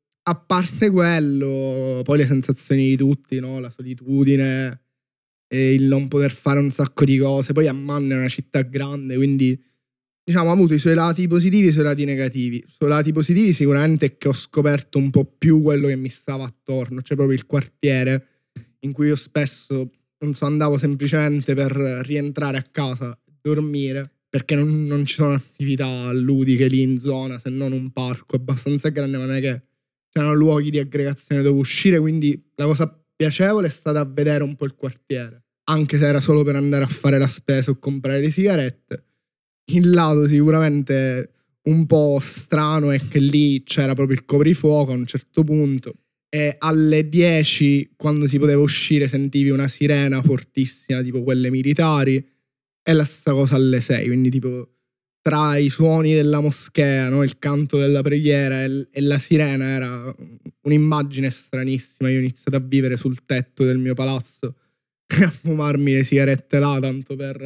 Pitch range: 130-150 Hz